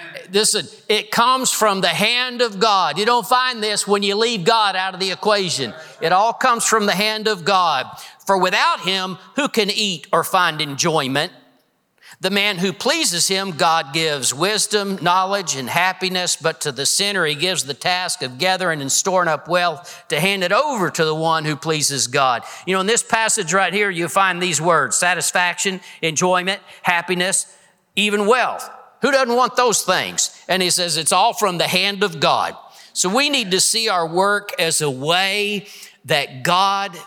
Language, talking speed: English, 185 wpm